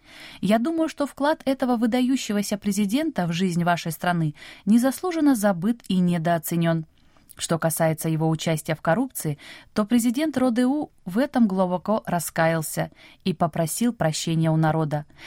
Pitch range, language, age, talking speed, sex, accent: 165-250 Hz, Russian, 20-39, 130 wpm, female, native